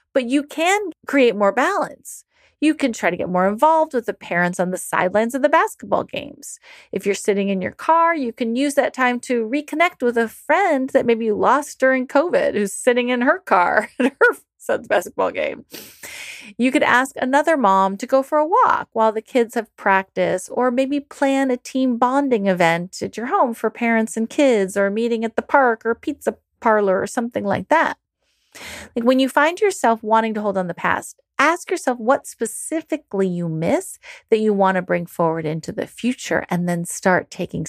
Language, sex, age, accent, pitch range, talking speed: English, female, 30-49, American, 195-285 Hz, 205 wpm